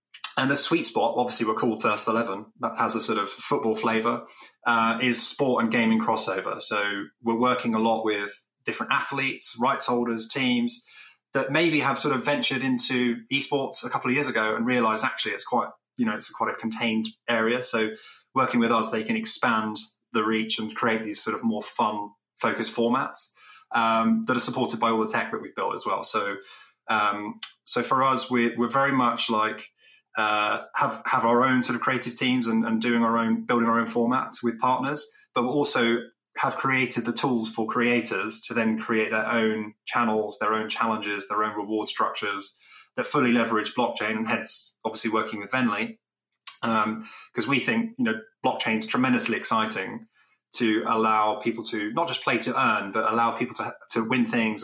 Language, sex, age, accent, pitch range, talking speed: English, male, 20-39, British, 110-125 Hz, 195 wpm